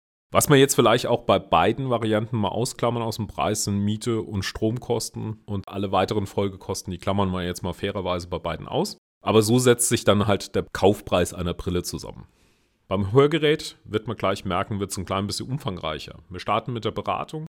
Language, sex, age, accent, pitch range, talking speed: German, male, 40-59, German, 95-120 Hz, 200 wpm